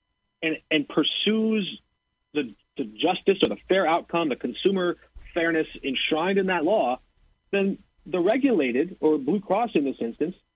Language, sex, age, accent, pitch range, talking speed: English, male, 40-59, American, 145-200 Hz, 150 wpm